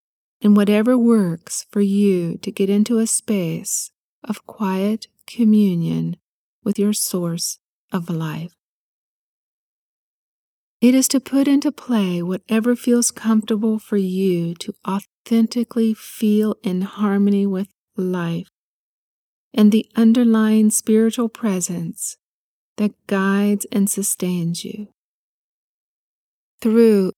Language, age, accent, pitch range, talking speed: English, 40-59, American, 190-225 Hz, 105 wpm